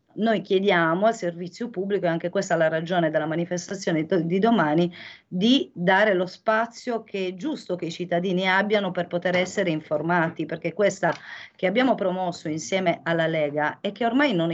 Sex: female